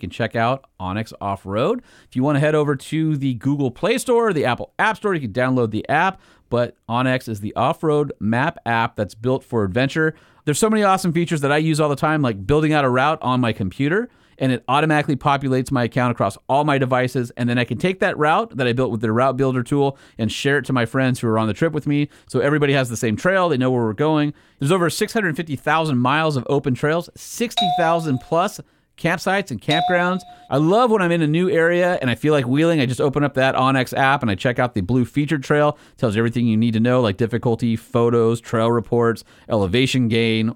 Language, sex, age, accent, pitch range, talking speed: English, male, 40-59, American, 120-155 Hz, 240 wpm